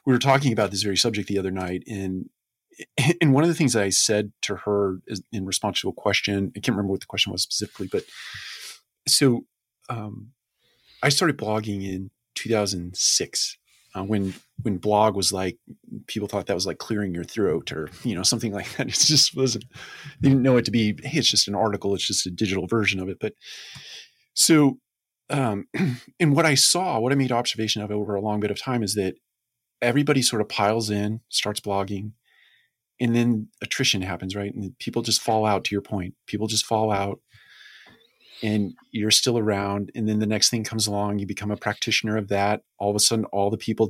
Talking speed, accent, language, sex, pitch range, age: 205 wpm, American, English, male, 100-120 Hz, 30-49